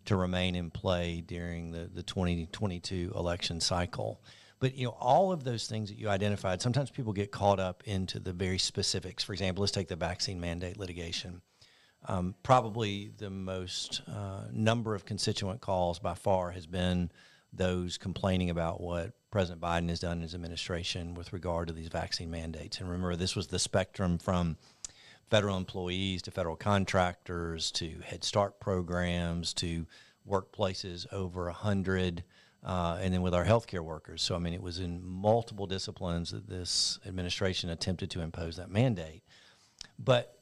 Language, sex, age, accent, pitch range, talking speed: English, male, 50-69, American, 85-105 Hz, 165 wpm